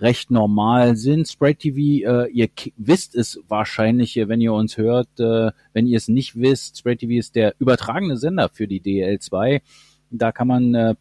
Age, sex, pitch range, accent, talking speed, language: 40-59, male, 120-150 Hz, German, 180 wpm, English